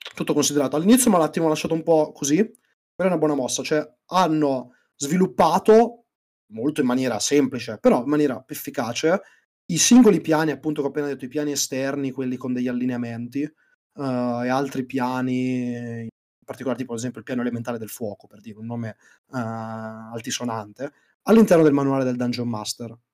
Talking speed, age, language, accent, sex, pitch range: 175 wpm, 30-49, Italian, native, male, 125-165 Hz